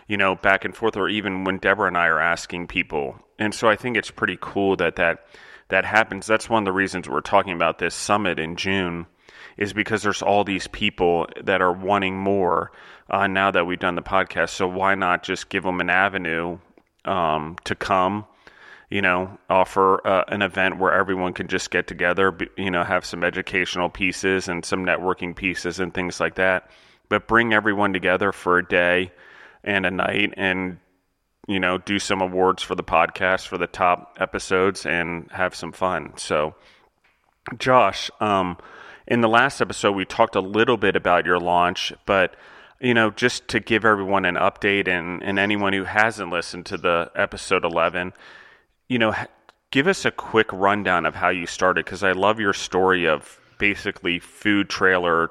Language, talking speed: English, 185 wpm